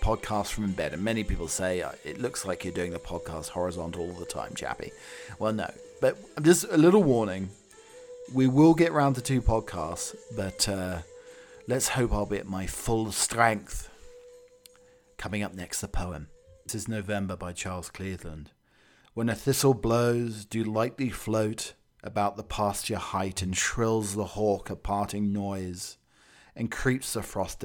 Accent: British